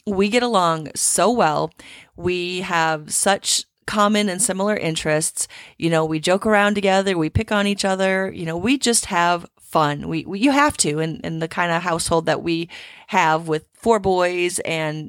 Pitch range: 165-205 Hz